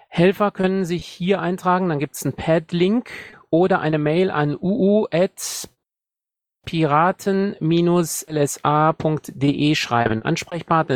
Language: German